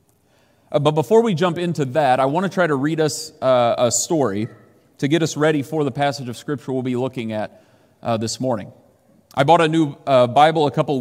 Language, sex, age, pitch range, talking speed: English, male, 30-49, 125-155 Hz, 225 wpm